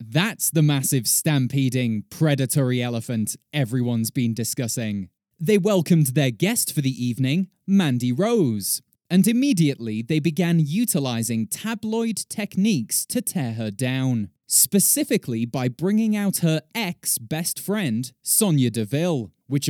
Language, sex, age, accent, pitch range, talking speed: English, male, 20-39, British, 130-185 Hz, 120 wpm